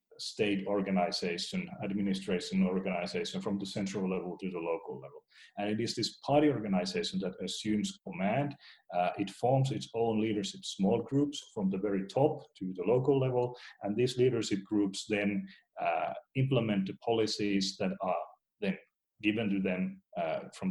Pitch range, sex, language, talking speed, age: 95-130 Hz, male, English, 155 wpm, 40-59